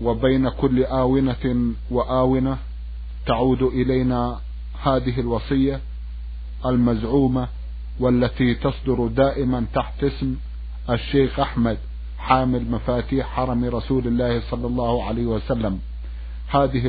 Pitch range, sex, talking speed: 115-135 Hz, male, 90 wpm